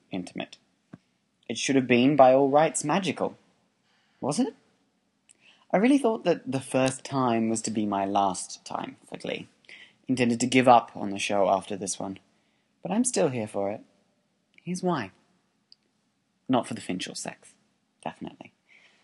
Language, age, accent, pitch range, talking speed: English, 20-39, British, 115-145 Hz, 160 wpm